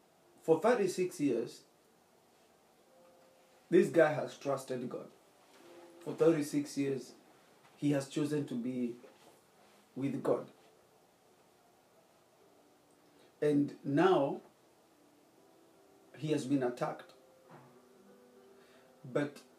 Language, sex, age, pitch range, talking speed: English, male, 40-59, 125-160 Hz, 75 wpm